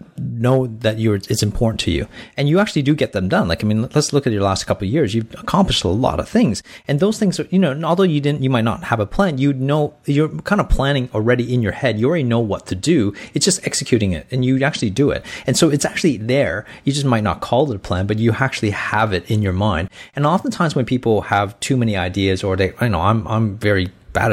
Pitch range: 105-150 Hz